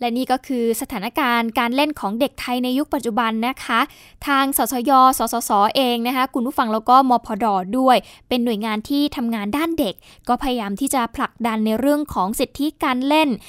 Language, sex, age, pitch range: Thai, female, 10-29, 230-285 Hz